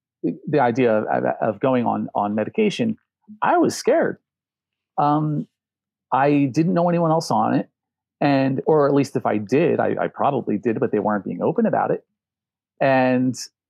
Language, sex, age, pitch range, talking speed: English, male, 40-59, 125-165 Hz, 165 wpm